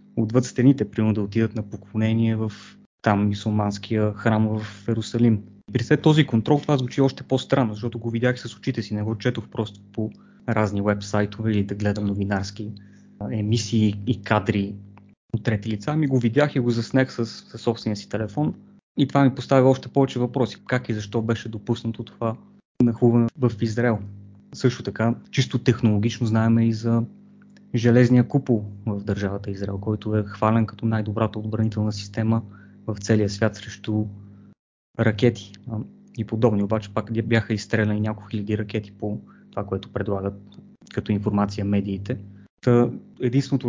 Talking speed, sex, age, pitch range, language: 150 wpm, male, 20-39, 105-120 Hz, Bulgarian